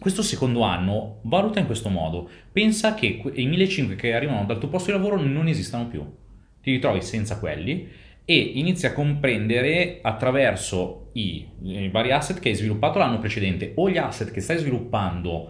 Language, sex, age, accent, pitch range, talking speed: Italian, male, 30-49, native, 95-135 Hz, 175 wpm